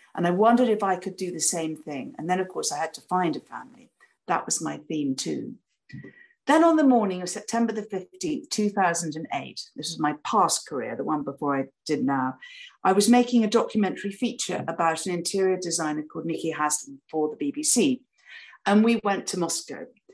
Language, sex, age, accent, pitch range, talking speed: English, female, 50-69, British, 165-230 Hz, 195 wpm